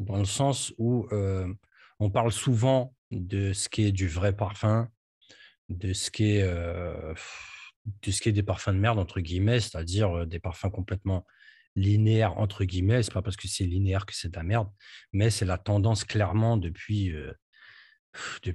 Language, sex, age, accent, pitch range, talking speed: French, male, 40-59, French, 95-115 Hz, 180 wpm